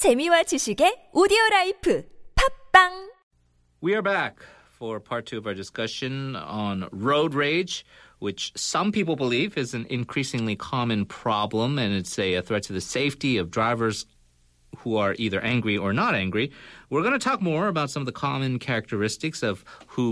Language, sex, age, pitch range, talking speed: English, male, 40-59, 100-135 Hz, 150 wpm